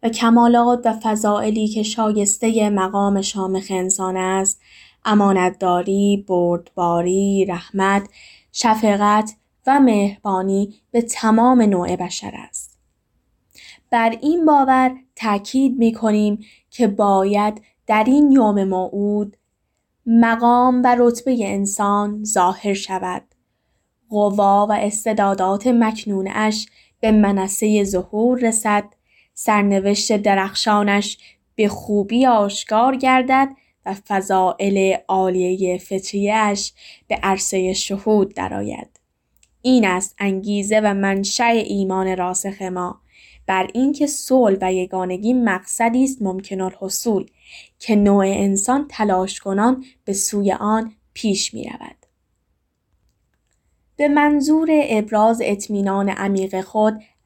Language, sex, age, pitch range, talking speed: Persian, female, 10-29, 195-225 Hz, 100 wpm